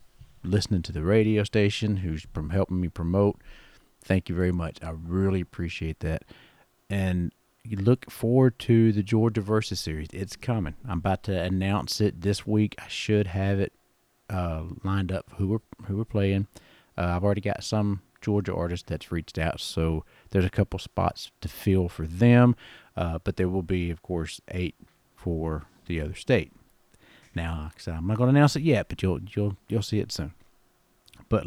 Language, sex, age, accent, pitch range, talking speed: English, male, 40-59, American, 85-105 Hz, 180 wpm